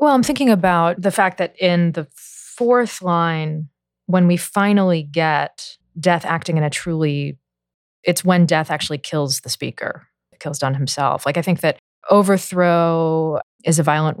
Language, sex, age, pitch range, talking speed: English, female, 20-39, 150-180 Hz, 165 wpm